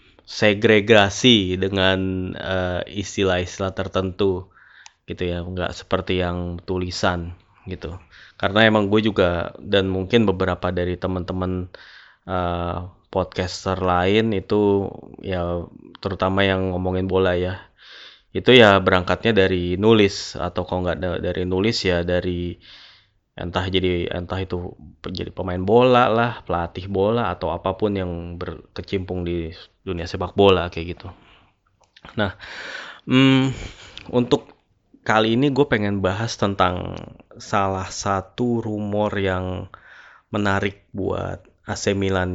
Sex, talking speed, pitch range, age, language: male, 115 wpm, 90-100 Hz, 20-39, Indonesian